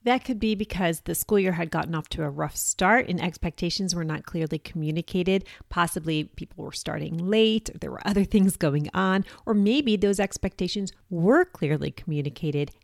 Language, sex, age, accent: English, female, 30-49, American